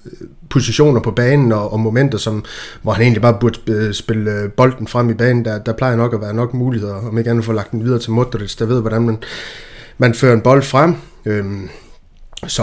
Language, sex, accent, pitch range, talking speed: Danish, male, native, 115-130 Hz, 215 wpm